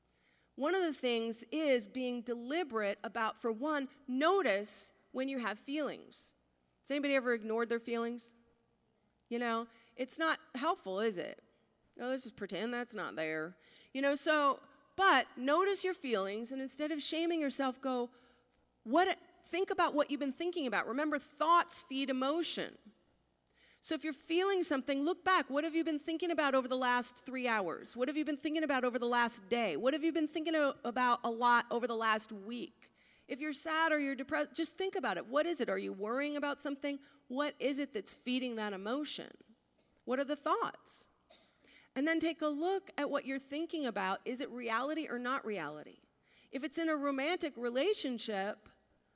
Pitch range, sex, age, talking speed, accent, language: 235-310 Hz, female, 40-59, 185 wpm, American, English